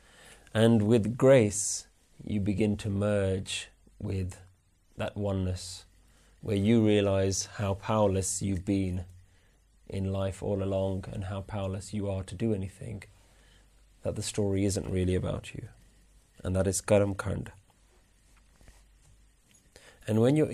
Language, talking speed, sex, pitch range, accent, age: English, 130 wpm, male, 95-110 Hz, British, 30-49